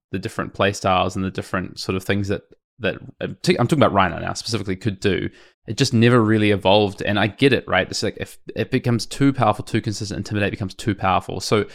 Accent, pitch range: Australian, 95-115 Hz